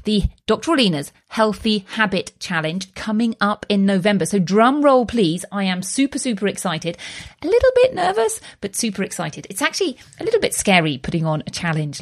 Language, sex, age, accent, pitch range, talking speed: English, female, 40-59, British, 185-250 Hz, 180 wpm